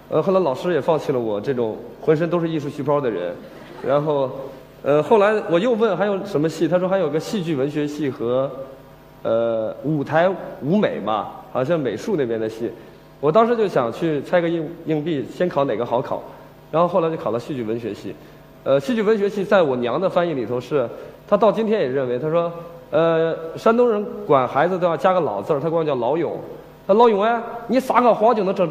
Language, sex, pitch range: Chinese, male, 140-190 Hz